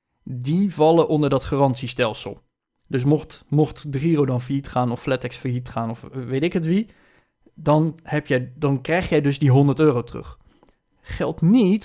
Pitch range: 130-160 Hz